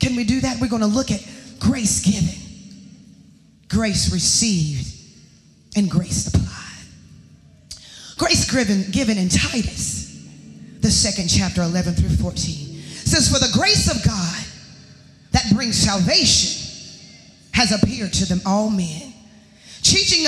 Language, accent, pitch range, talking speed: English, American, 195-285 Hz, 125 wpm